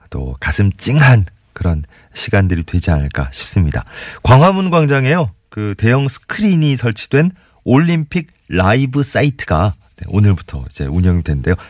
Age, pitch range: 40-59, 85-130 Hz